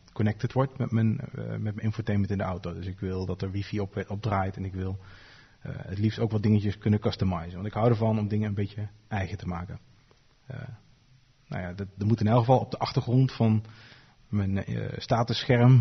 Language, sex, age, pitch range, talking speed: Dutch, male, 40-59, 100-120 Hz, 215 wpm